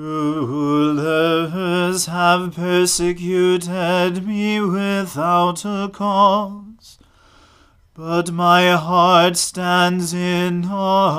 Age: 40-59